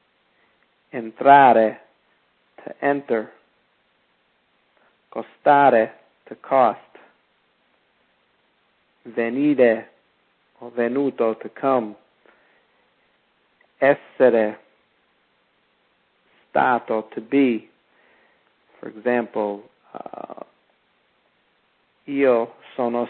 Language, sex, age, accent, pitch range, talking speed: English, male, 50-69, American, 110-125 Hz, 50 wpm